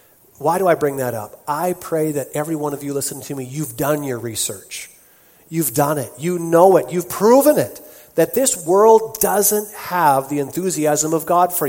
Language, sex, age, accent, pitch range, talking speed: English, male, 40-59, American, 150-215 Hz, 200 wpm